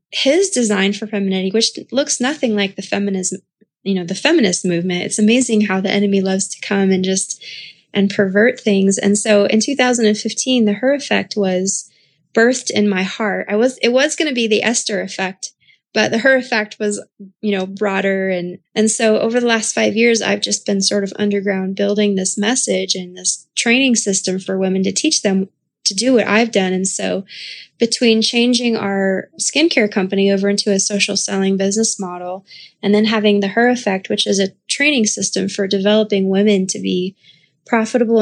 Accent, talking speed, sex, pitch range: American, 190 wpm, female, 190-220 Hz